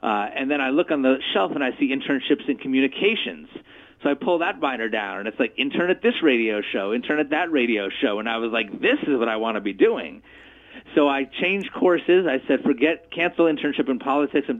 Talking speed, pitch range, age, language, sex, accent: 235 wpm, 115-145 Hz, 30-49, English, male, American